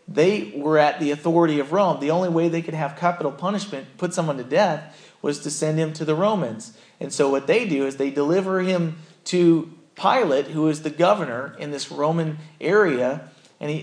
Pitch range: 140-170 Hz